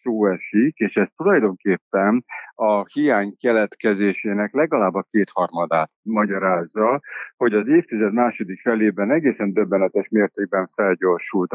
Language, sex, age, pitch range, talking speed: Hungarian, male, 60-79, 95-115 Hz, 105 wpm